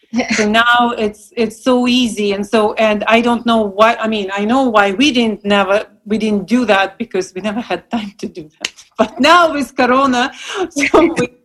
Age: 40-59